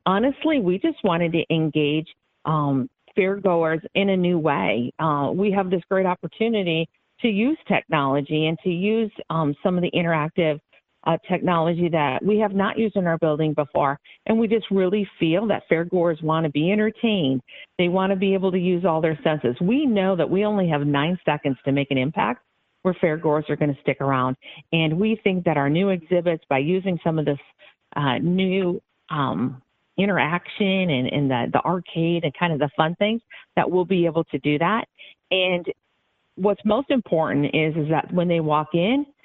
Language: English